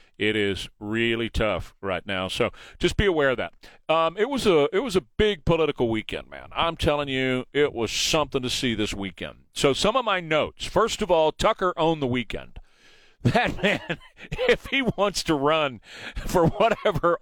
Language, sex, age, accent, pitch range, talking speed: English, male, 40-59, American, 125-180 Hz, 180 wpm